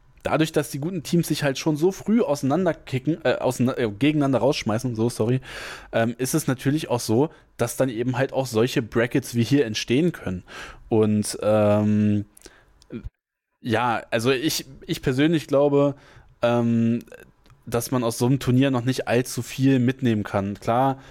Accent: German